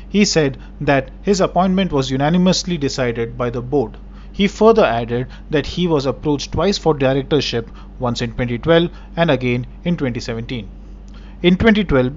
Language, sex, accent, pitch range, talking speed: English, male, Indian, 125-160 Hz, 150 wpm